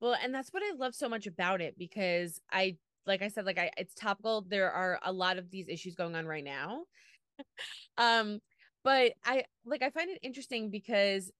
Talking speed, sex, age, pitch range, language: 205 wpm, female, 20-39, 180-230 Hz, English